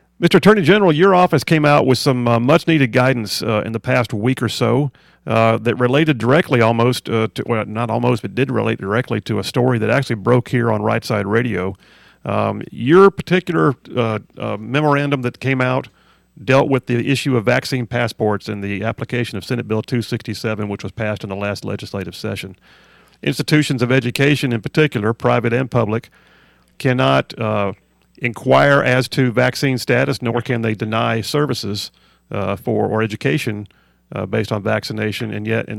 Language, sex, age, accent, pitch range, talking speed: English, male, 40-59, American, 110-130 Hz, 180 wpm